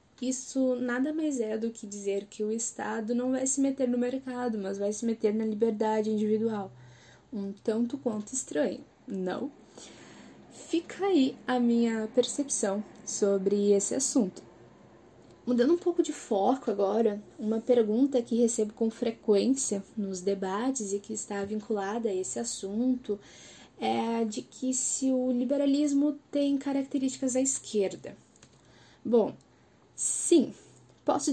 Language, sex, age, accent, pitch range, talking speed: Portuguese, female, 10-29, Brazilian, 215-270 Hz, 135 wpm